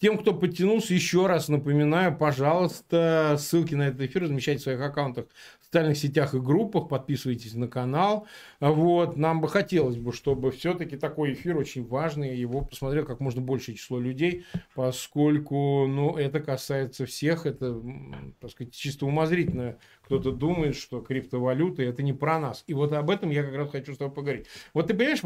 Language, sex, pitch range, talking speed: Russian, male, 135-180 Hz, 175 wpm